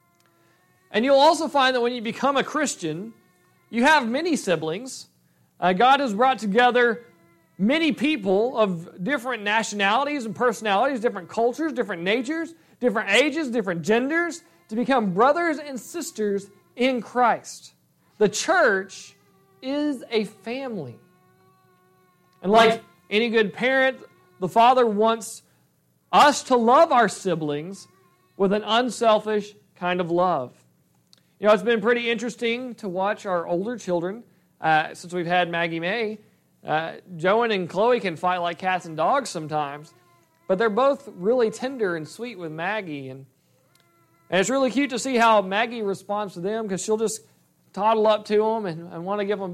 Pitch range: 180-240 Hz